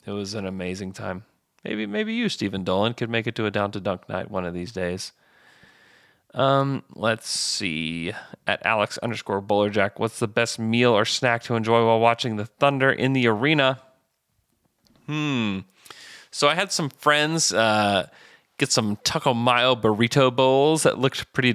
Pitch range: 105-135 Hz